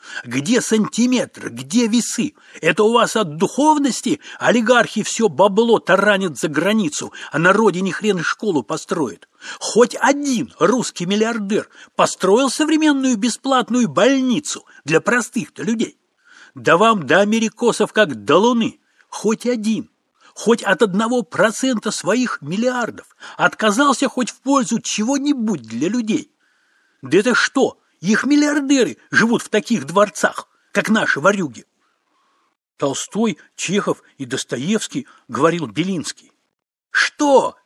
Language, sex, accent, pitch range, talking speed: Russian, male, native, 205-255 Hz, 120 wpm